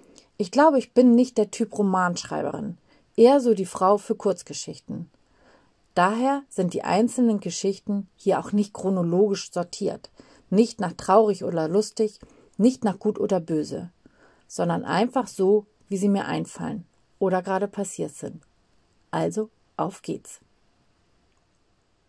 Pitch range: 190-225 Hz